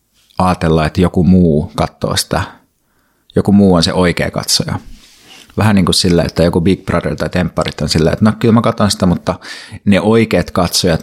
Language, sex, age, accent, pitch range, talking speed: Finnish, male, 30-49, native, 85-95 Hz, 185 wpm